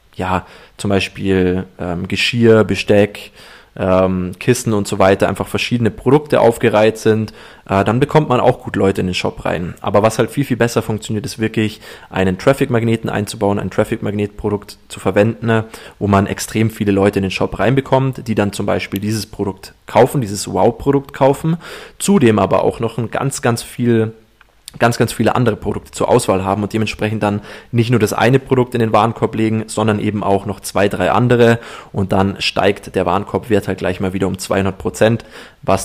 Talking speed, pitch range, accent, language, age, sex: 185 wpm, 100-115 Hz, German, German, 20-39, male